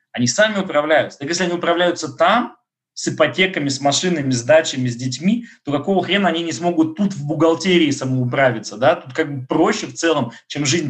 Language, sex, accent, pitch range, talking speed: Russian, male, native, 120-165 Hz, 195 wpm